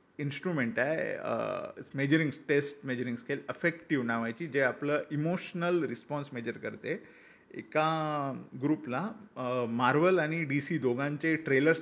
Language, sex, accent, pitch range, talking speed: Marathi, male, native, 125-165 Hz, 110 wpm